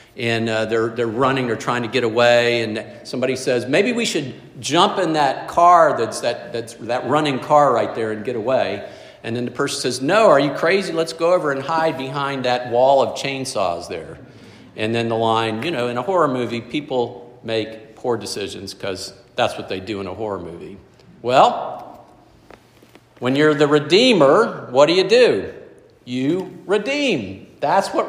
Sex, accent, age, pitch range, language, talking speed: male, American, 50-69, 115-150 Hz, English, 185 wpm